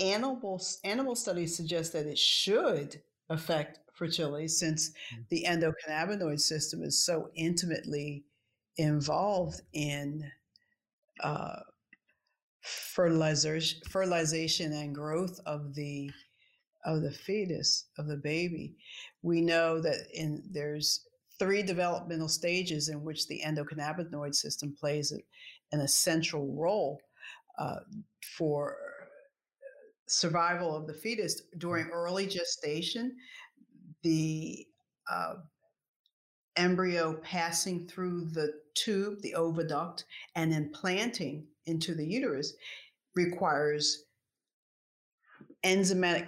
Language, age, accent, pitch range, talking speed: English, 50-69, American, 150-185 Hz, 95 wpm